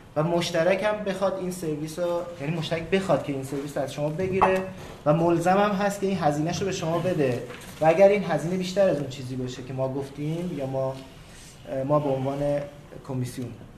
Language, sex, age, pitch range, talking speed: Persian, male, 30-49, 135-165 Hz, 190 wpm